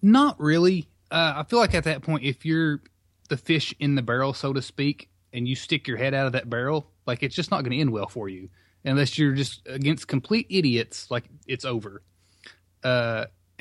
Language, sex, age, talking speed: English, male, 20-39, 210 wpm